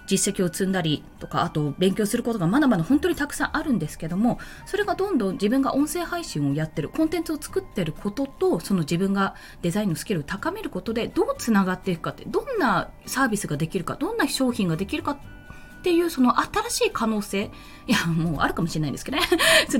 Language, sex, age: Japanese, female, 20-39